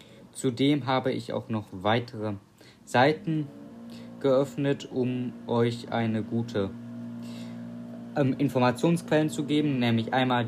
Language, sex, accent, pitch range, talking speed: German, male, German, 105-130 Hz, 105 wpm